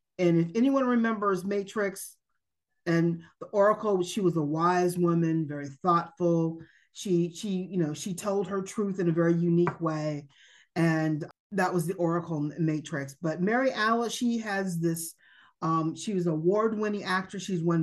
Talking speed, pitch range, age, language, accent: 160 wpm, 165-205 Hz, 30-49, English, American